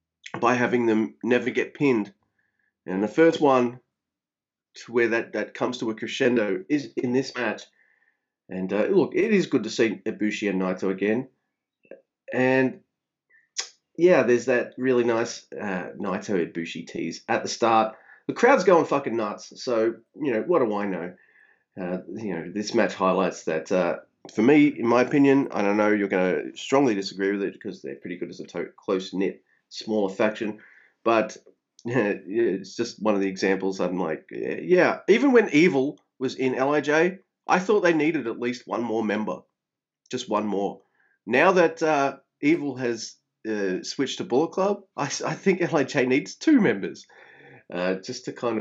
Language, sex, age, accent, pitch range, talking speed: English, male, 30-49, Australian, 100-135 Hz, 175 wpm